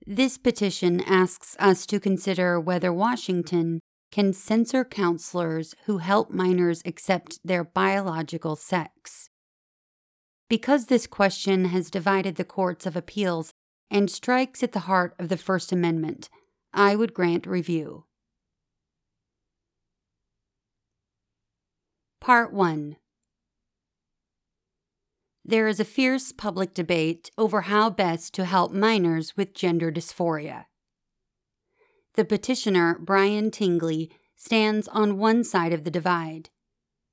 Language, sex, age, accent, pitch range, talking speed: English, female, 40-59, American, 170-210 Hz, 110 wpm